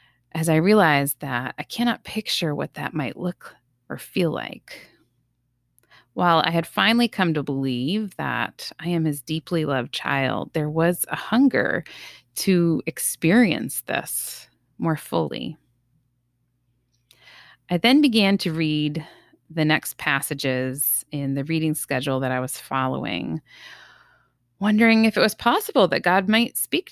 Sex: female